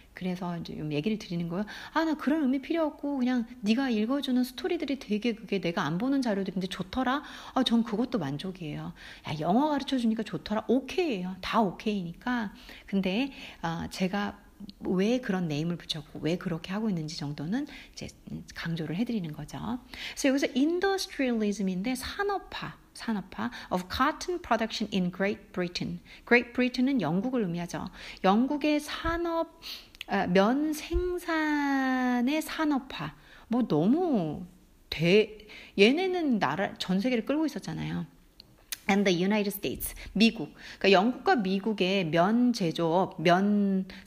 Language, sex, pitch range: Korean, female, 185-260 Hz